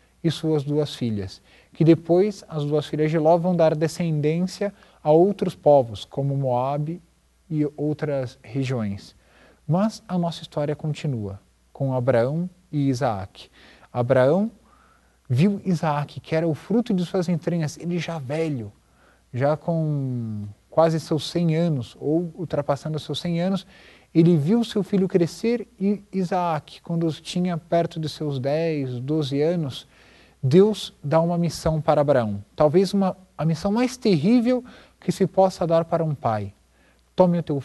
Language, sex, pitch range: Portuguese, male, 135-175 Hz